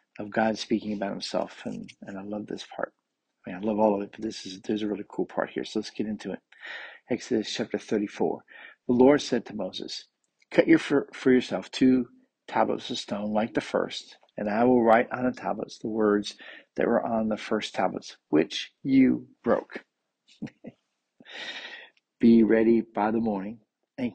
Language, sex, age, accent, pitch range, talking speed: English, male, 50-69, American, 105-130 Hz, 190 wpm